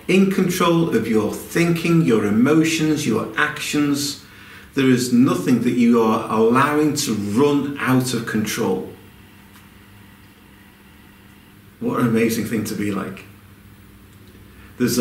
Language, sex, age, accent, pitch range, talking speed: English, male, 50-69, British, 100-155 Hz, 115 wpm